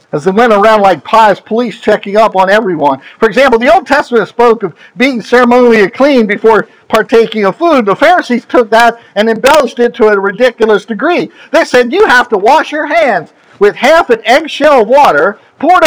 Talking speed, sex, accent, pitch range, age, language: 190 wpm, male, American, 210-270 Hz, 50-69, English